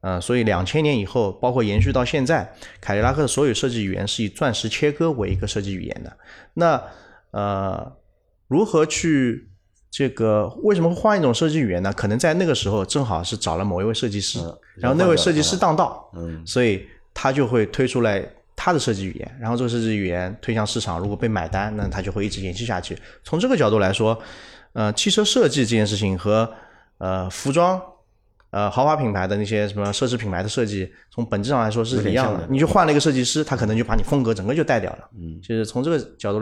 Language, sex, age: Chinese, male, 30-49